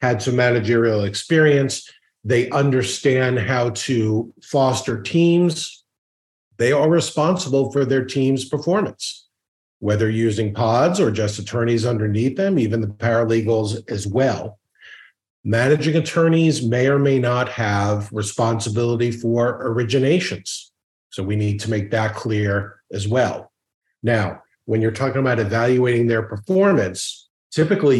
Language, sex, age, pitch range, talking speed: English, male, 40-59, 105-135 Hz, 125 wpm